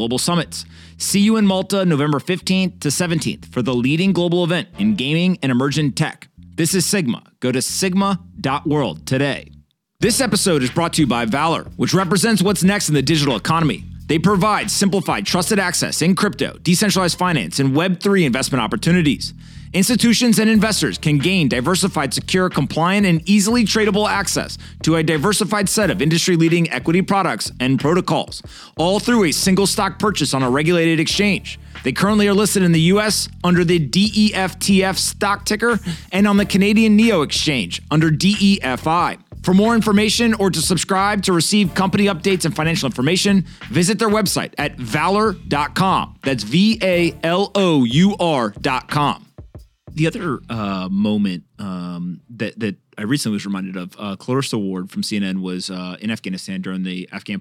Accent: American